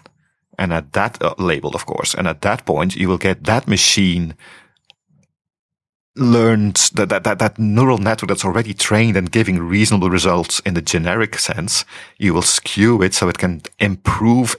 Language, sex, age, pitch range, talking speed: English, male, 40-59, 85-105 Hz, 175 wpm